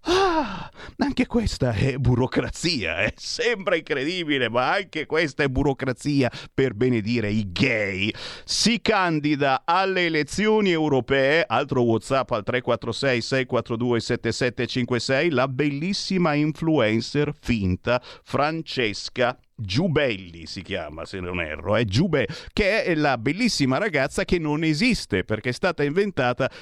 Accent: native